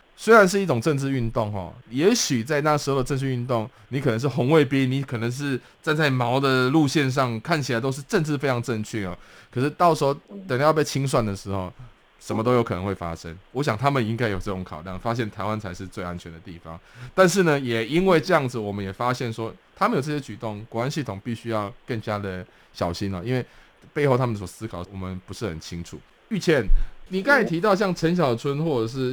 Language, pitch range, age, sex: Chinese, 105-140 Hz, 20-39, male